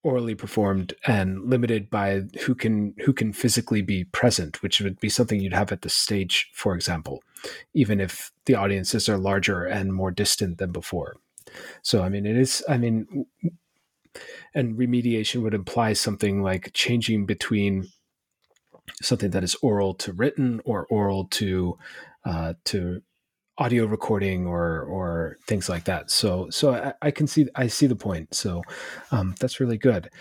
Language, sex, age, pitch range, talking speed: English, male, 30-49, 100-130 Hz, 165 wpm